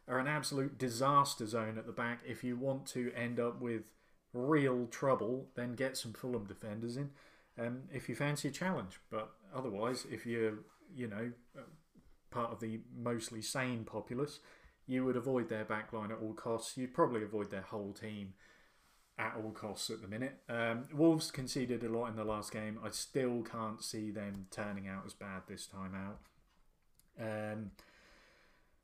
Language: English